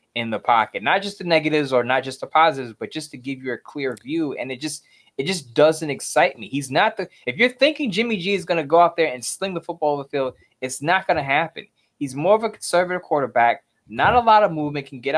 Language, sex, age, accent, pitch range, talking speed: English, male, 20-39, American, 130-175 Hz, 265 wpm